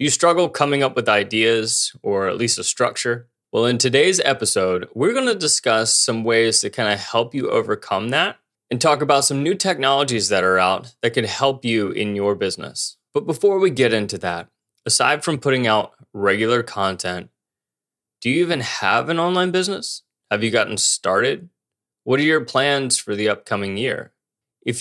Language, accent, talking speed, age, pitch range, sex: English, American, 185 wpm, 20-39, 105-140 Hz, male